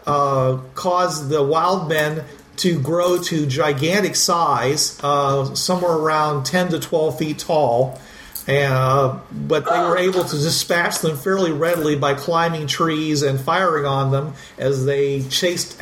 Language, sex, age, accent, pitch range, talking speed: English, male, 40-59, American, 135-160 Hz, 145 wpm